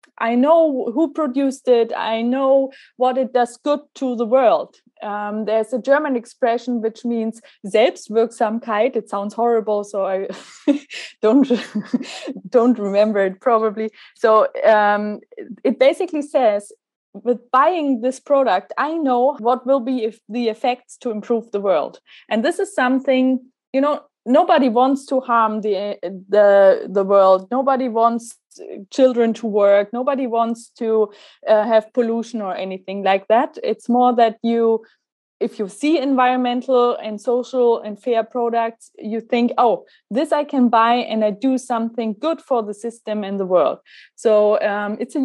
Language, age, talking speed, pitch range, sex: German, 20-39, 155 wpm, 215-260 Hz, female